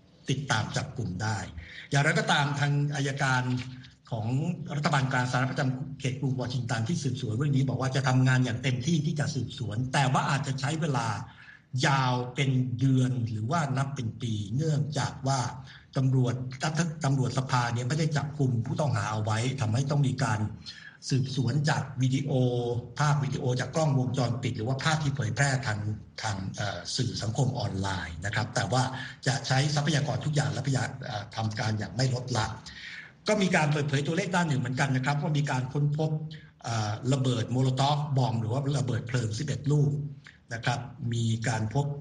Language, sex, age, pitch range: Thai, male, 60-79, 125-145 Hz